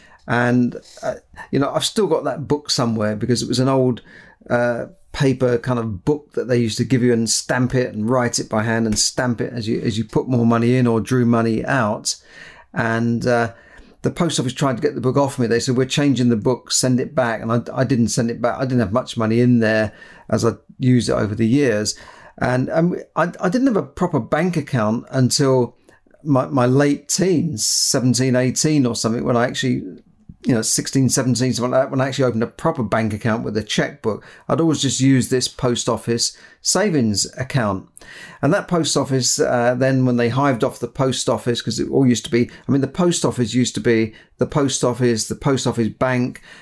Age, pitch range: 40-59, 115-135 Hz